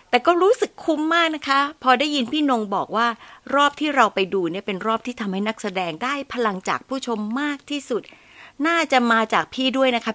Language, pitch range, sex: Thai, 185-255 Hz, female